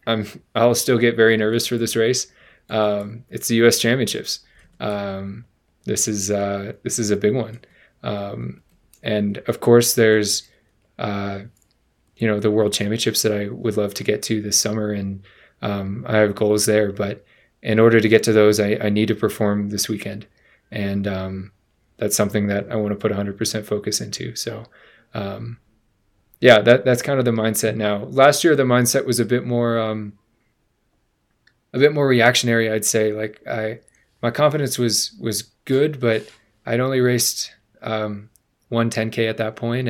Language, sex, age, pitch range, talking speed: English, male, 20-39, 105-115 Hz, 180 wpm